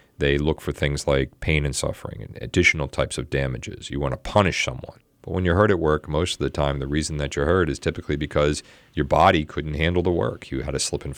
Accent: American